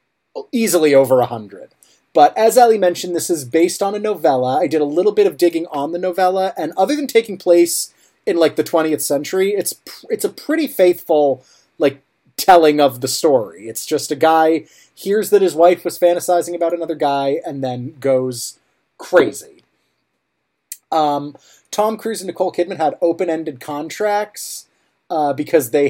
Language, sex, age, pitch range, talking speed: English, male, 30-49, 140-185 Hz, 170 wpm